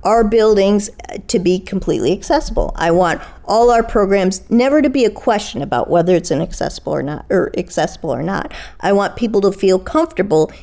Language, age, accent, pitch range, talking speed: English, 40-59, American, 170-220 Hz, 160 wpm